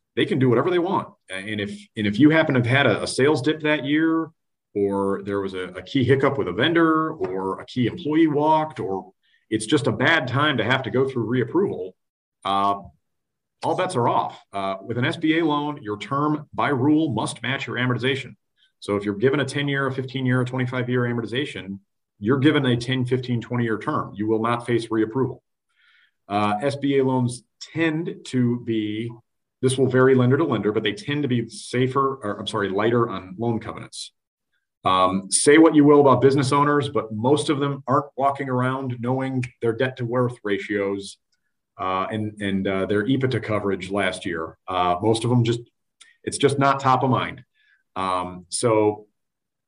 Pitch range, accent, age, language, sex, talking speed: 105-140 Hz, American, 40-59, English, male, 190 wpm